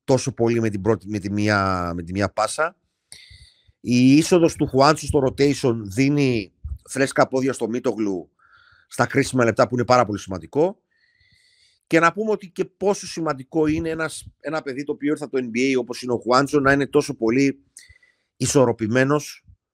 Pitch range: 115-145 Hz